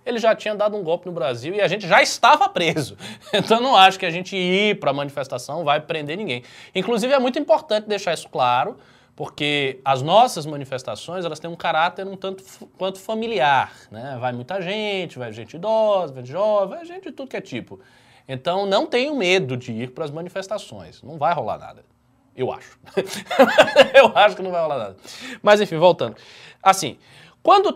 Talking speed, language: 195 wpm, Portuguese